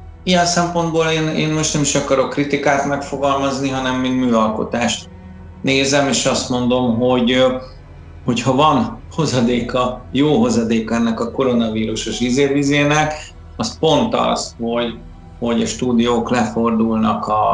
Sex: male